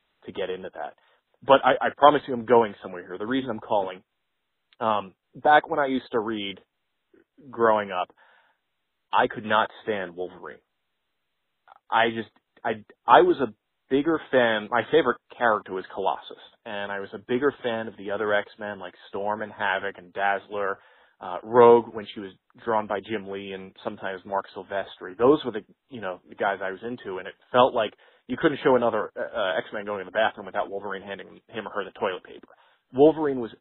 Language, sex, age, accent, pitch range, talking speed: English, male, 30-49, American, 100-125 Hz, 195 wpm